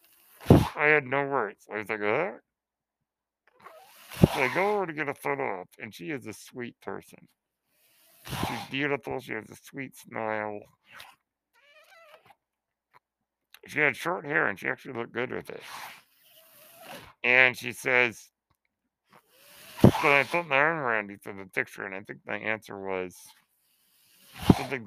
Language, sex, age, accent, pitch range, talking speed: English, male, 60-79, American, 105-140 Hz, 145 wpm